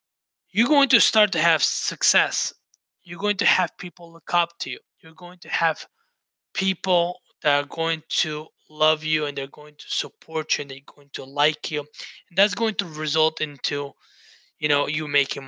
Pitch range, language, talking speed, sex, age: 155-200 Hz, English, 190 wpm, male, 20-39